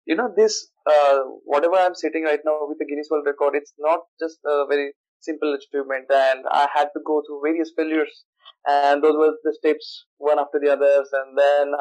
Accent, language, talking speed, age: native, Hindi, 205 wpm, 20-39